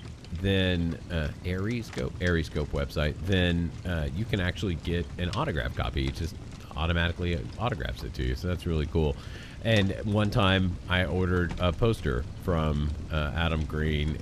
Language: English